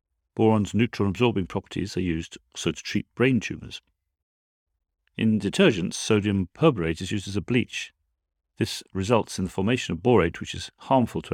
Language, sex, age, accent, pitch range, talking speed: English, male, 40-59, British, 80-110 Hz, 160 wpm